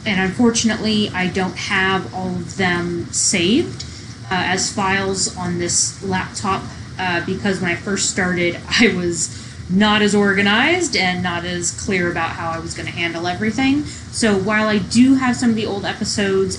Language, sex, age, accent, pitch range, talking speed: English, female, 20-39, American, 175-215 Hz, 175 wpm